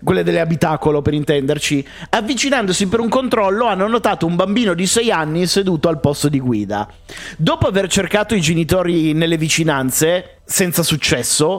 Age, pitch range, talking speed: 30-49, 150-225 Hz, 155 wpm